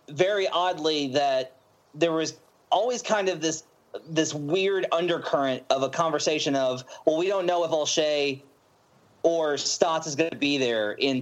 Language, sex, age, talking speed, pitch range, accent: English, male, 30-49, 160 wpm, 135-165 Hz, American